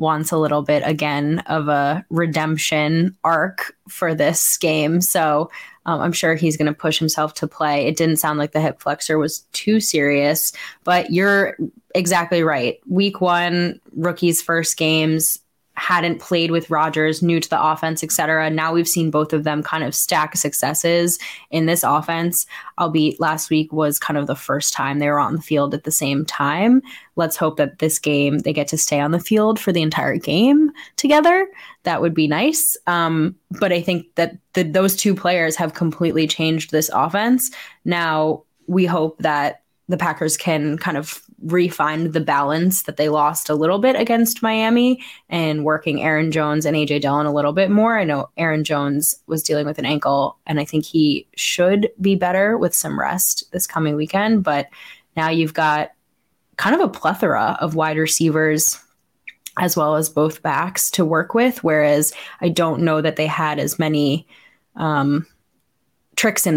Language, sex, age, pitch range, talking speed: English, female, 10-29, 150-175 Hz, 180 wpm